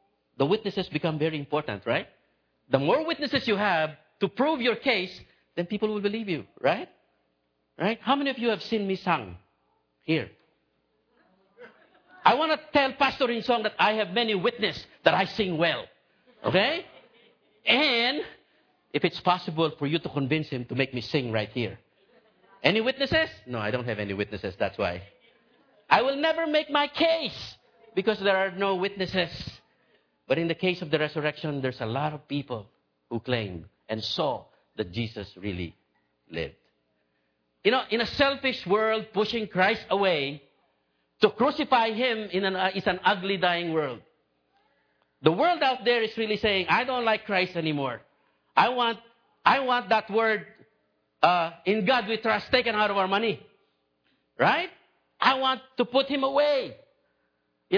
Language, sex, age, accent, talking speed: English, male, 50-69, Filipino, 165 wpm